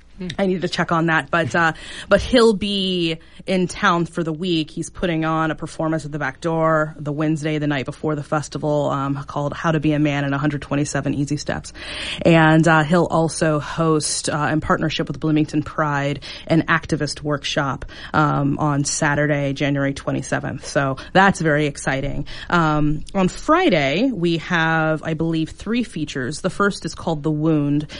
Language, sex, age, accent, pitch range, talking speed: English, female, 30-49, American, 145-165 Hz, 175 wpm